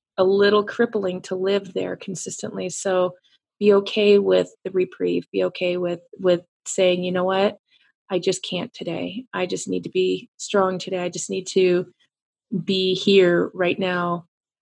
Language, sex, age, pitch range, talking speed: English, female, 30-49, 175-205 Hz, 165 wpm